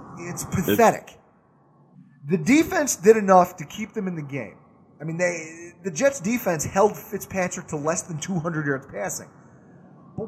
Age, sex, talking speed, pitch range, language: 30-49, male, 160 wpm, 155-215 Hz, English